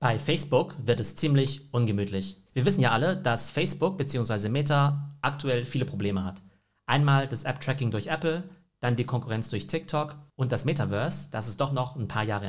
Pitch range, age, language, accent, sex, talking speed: 115-145 Hz, 40-59, German, German, male, 185 wpm